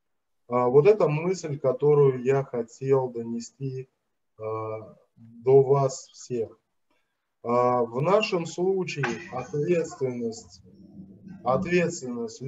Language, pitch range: Russian, 125-155 Hz